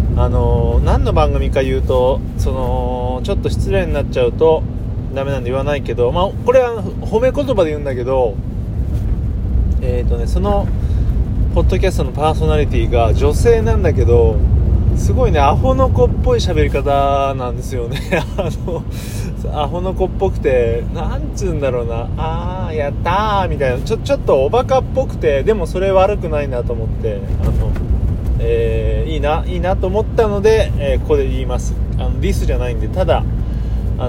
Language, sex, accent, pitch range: Japanese, male, native, 100-125 Hz